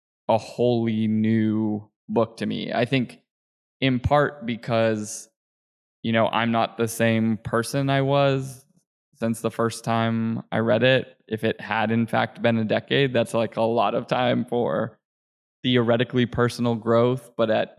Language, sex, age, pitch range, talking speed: English, male, 20-39, 110-125 Hz, 160 wpm